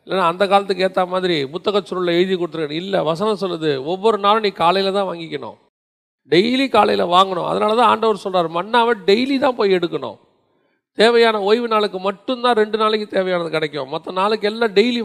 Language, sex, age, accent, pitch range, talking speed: Tamil, male, 40-59, native, 185-235 Hz, 165 wpm